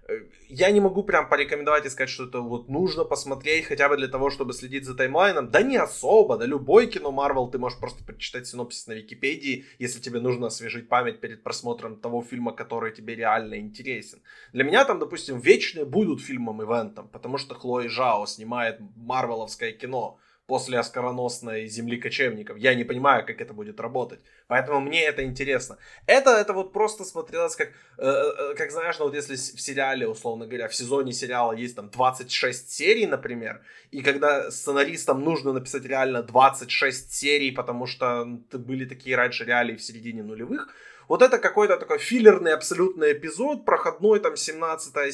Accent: native